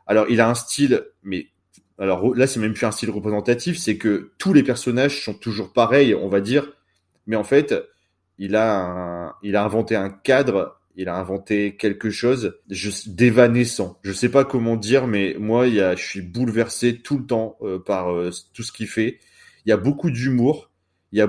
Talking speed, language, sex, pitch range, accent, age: 205 wpm, French, male, 100-120 Hz, French, 20-39